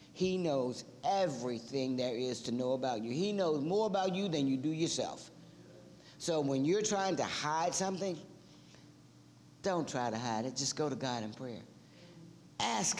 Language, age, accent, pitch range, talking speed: English, 50-69, American, 135-180 Hz, 170 wpm